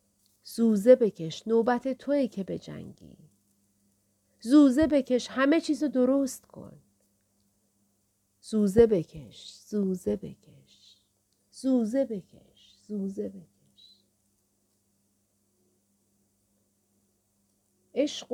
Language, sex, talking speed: Persian, female, 70 wpm